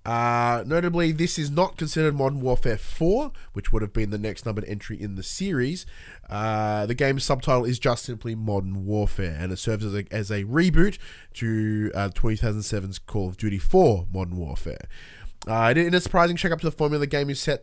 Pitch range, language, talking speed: 105-140 Hz, English, 195 wpm